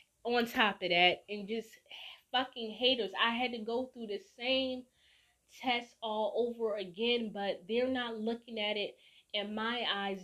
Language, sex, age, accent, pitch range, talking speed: English, female, 20-39, American, 200-245 Hz, 165 wpm